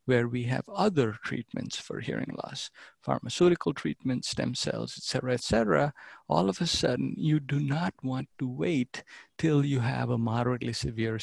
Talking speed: 170 wpm